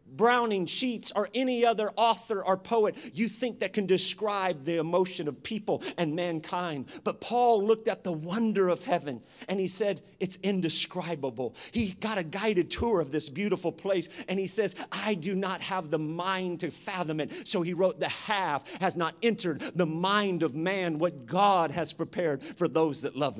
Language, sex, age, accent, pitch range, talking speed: English, male, 40-59, American, 175-225 Hz, 185 wpm